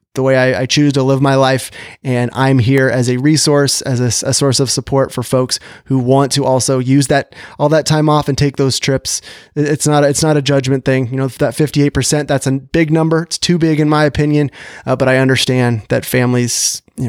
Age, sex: 30-49, male